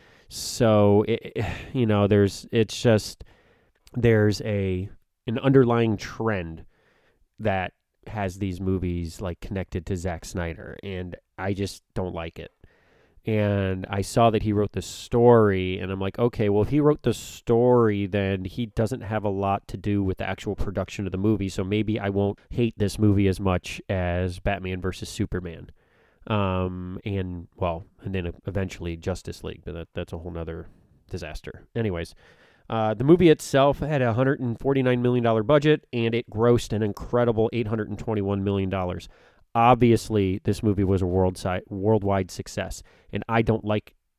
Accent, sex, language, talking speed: American, male, English, 160 wpm